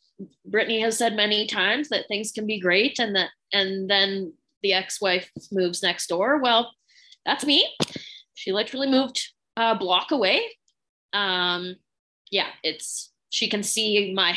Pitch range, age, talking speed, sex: 200-305 Hz, 20-39, 145 wpm, female